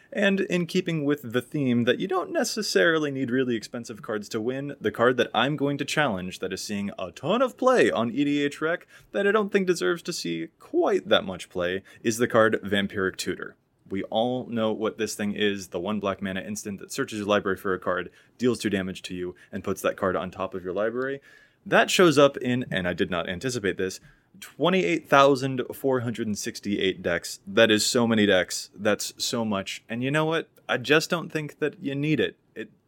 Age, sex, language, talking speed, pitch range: 20-39, male, English, 210 wpm, 105-150 Hz